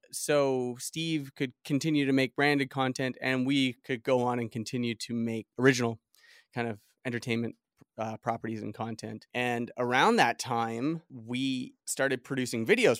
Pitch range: 115-135 Hz